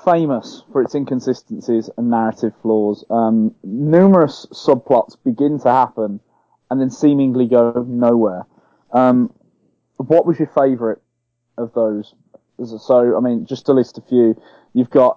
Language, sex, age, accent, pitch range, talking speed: English, male, 20-39, British, 115-140 Hz, 140 wpm